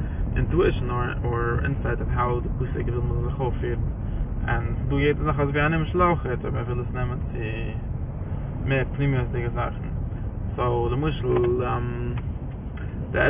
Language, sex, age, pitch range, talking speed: English, male, 20-39, 115-140 Hz, 115 wpm